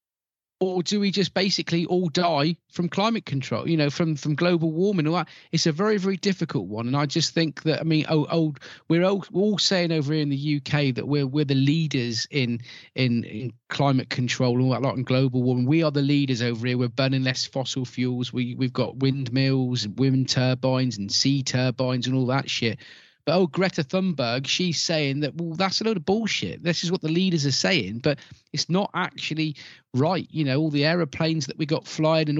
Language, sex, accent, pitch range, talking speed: English, male, British, 135-170 Hz, 230 wpm